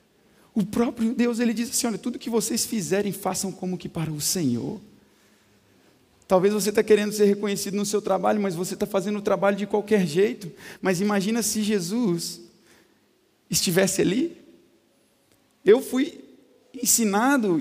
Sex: male